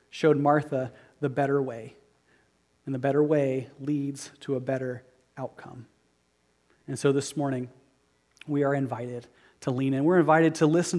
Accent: American